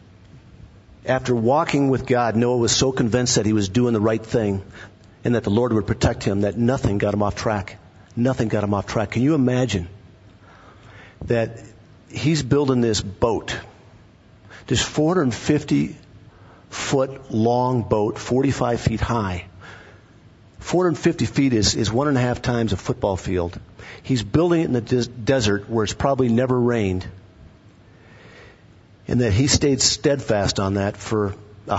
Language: English